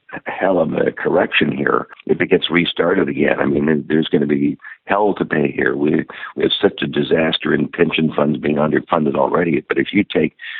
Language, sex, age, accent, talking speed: English, male, 60-79, American, 205 wpm